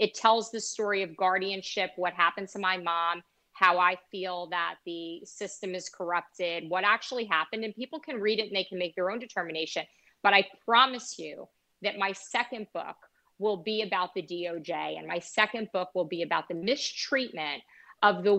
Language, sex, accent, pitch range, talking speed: English, female, American, 180-230 Hz, 190 wpm